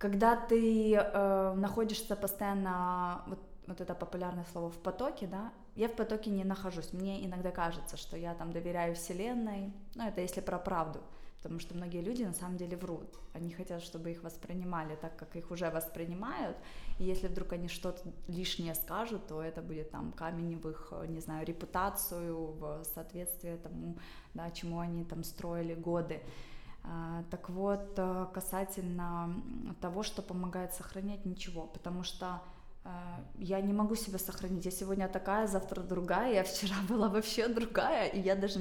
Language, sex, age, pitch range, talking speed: Russian, female, 20-39, 170-195 Hz, 160 wpm